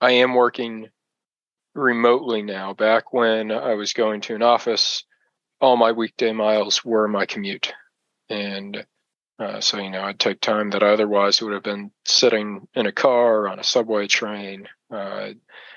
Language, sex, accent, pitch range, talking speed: English, male, American, 105-115 Hz, 170 wpm